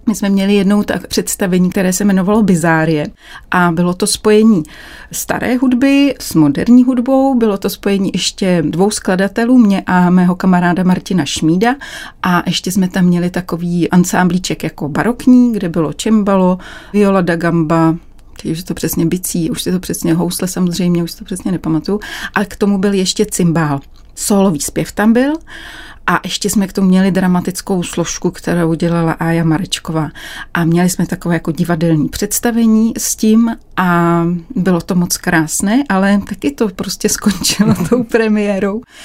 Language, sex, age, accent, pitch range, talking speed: Czech, female, 30-49, native, 180-215 Hz, 160 wpm